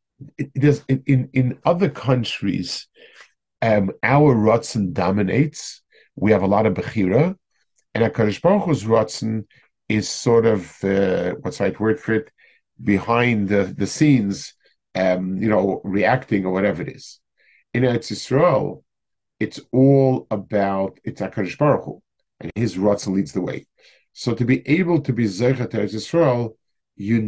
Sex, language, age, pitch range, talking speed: male, English, 50-69, 100-130 Hz, 145 wpm